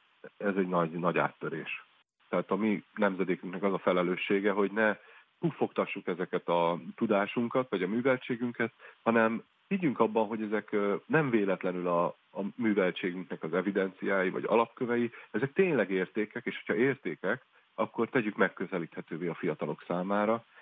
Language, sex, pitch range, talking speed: Hungarian, male, 95-115 Hz, 135 wpm